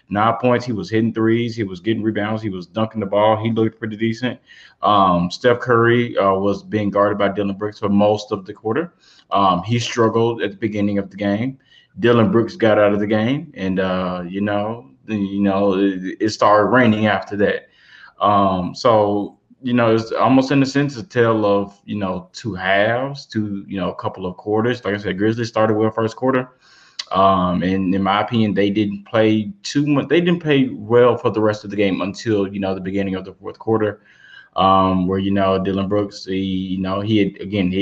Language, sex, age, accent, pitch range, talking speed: English, male, 20-39, American, 100-115 Hz, 215 wpm